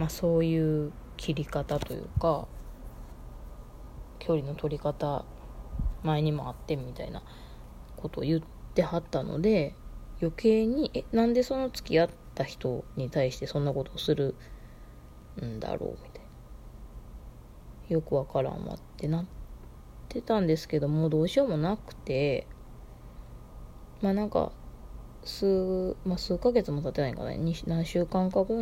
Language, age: Japanese, 20-39